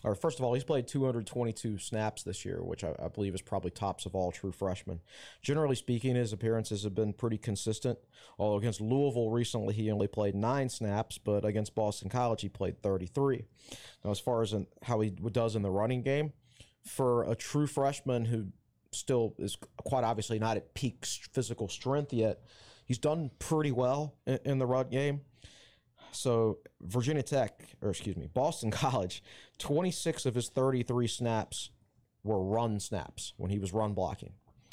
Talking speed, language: 170 wpm, English